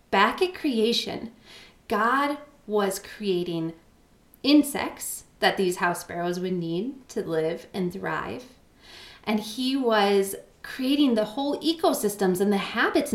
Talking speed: 125 wpm